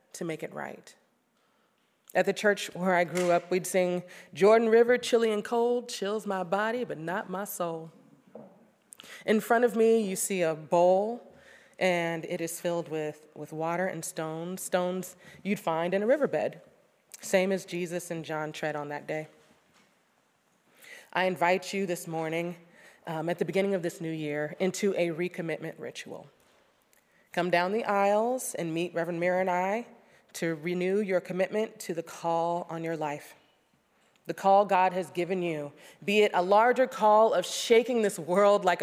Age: 30-49